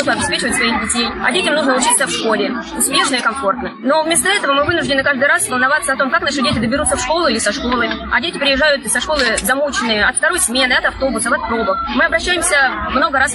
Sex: female